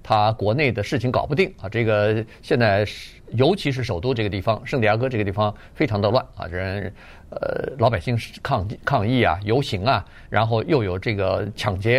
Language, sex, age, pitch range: Chinese, male, 50-69, 105-140 Hz